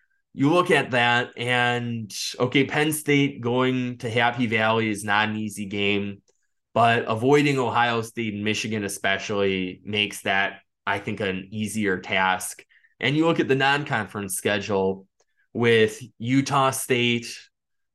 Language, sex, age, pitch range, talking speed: English, male, 20-39, 100-125 Hz, 135 wpm